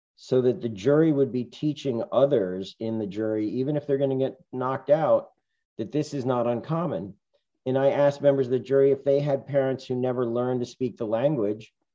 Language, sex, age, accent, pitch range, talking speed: English, male, 50-69, American, 110-140 Hz, 205 wpm